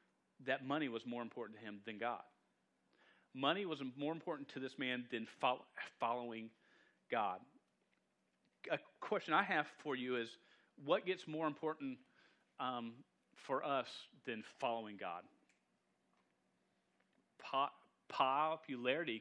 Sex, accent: male, American